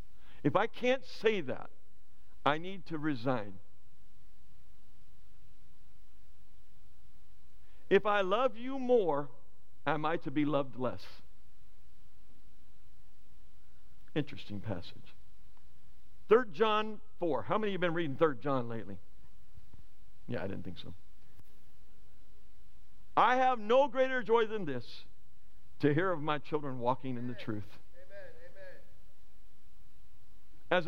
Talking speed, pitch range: 110 wpm, 100-145 Hz